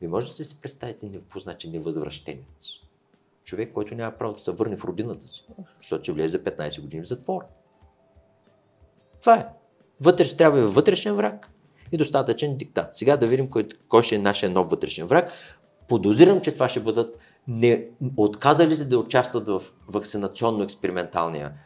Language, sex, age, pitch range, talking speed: Bulgarian, male, 50-69, 105-155 Hz, 160 wpm